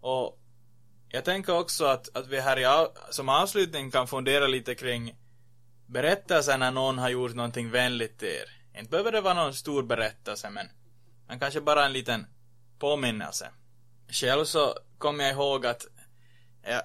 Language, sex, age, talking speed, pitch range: Swedish, male, 20-39, 165 wpm, 120-140 Hz